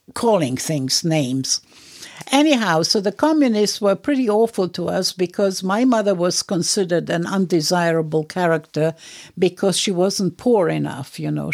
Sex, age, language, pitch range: female, 60-79, English, 155-190 Hz